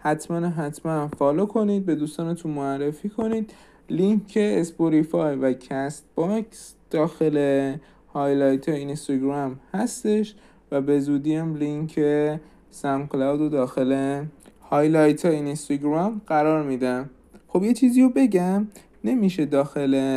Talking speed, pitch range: 115 wpm, 135-170 Hz